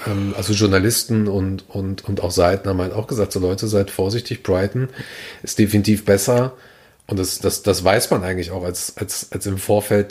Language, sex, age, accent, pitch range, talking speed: German, male, 40-59, German, 100-115 Hz, 190 wpm